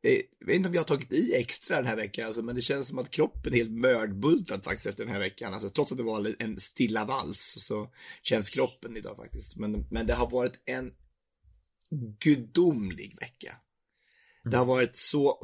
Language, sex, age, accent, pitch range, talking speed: English, male, 30-49, Swedish, 100-120 Hz, 200 wpm